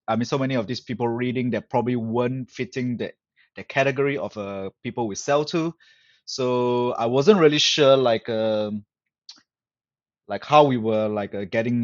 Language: English